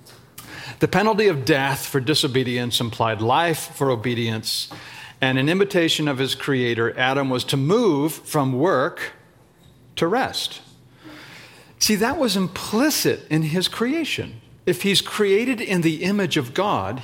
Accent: American